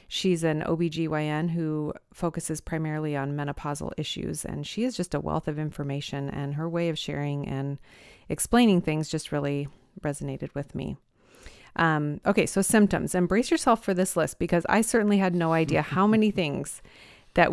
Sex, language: female, English